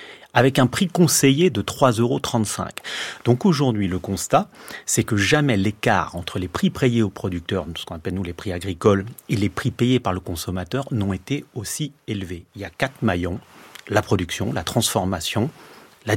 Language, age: French, 30-49